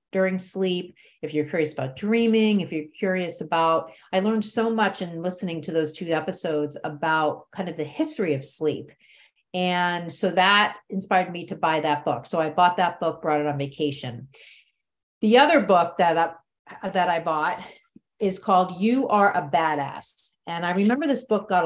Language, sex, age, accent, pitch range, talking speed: English, female, 40-59, American, 165-210 Hz, 185 wpm